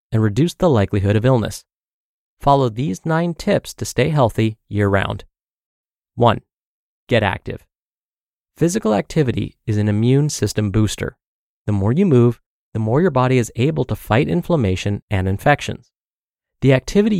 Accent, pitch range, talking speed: American, 105-145 Hz, 145 wpm